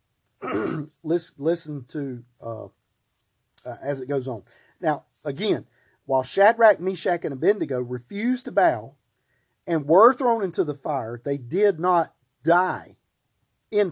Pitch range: 125-175 Hz